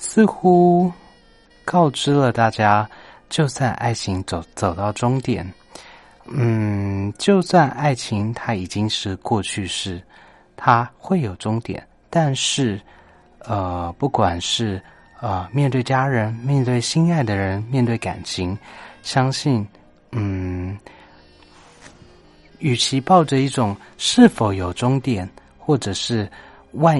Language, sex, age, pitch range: Chinese, male, 30-49, 95-130 Hz